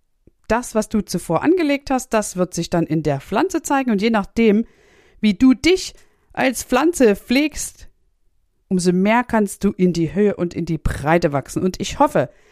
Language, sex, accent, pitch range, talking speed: German, female, German, 195-290 Hz, 180 wpm